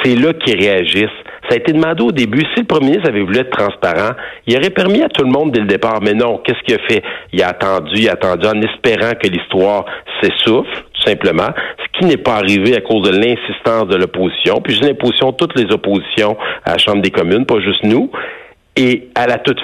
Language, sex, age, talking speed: French, male, 60-79, 235 wpm